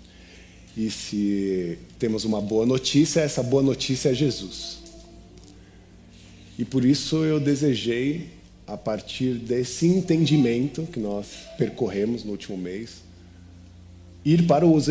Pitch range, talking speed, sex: 90-135 Hz, 115 wpm, male